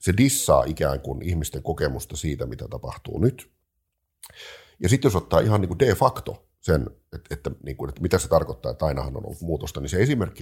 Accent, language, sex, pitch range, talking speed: native, Finnish, male, 70-85 Hz, 205 wpm